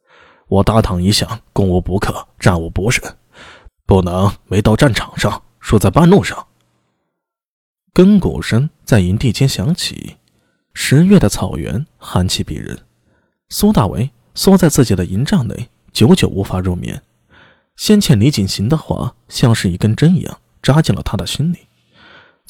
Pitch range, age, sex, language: 100-160 Hz, 20-39, male, Chinese